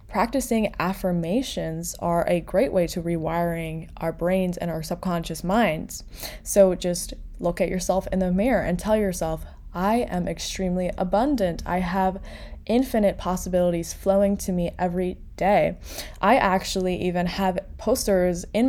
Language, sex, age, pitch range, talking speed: English, female, 20-39, 175-200 Hz, 140 wpm